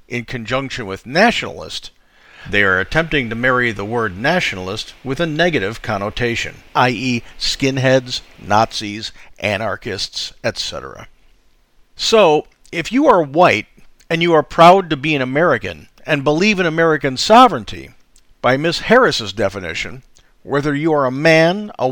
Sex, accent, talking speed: male, American, 135 wpm